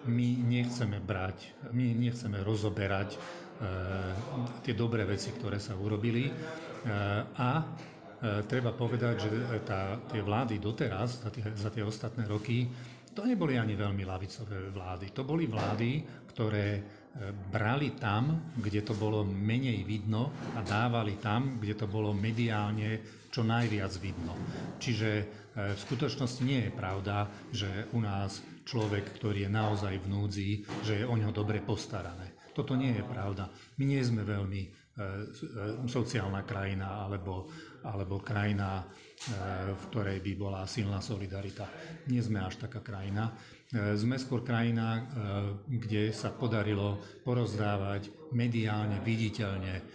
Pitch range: 100-120 Hz